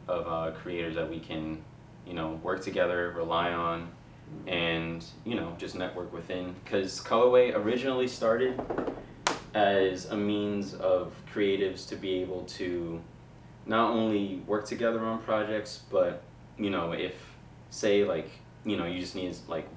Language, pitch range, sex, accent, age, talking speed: English, 80-100 Hz, male, American, 20-39, 150 wpm